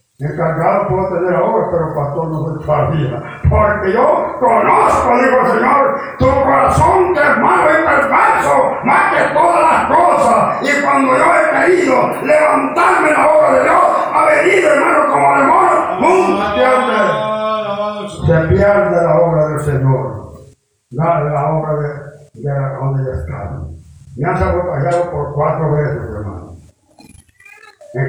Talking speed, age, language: 145 wpm, 60-79, Spanish